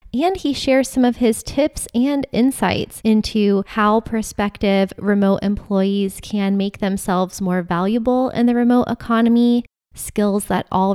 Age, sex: 20-39, female